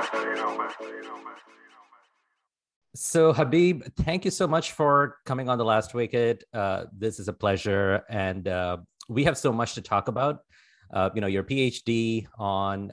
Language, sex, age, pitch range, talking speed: English, male, 30-49, 100-120 Hz, 150 wpm